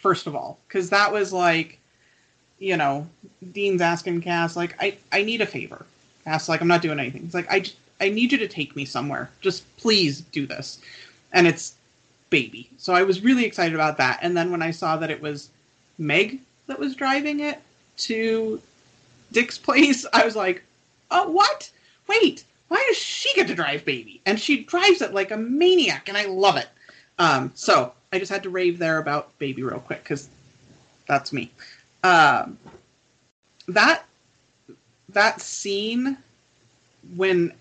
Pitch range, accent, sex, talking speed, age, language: 160-220 Hz, American, female, 170 wpm, 30-49, English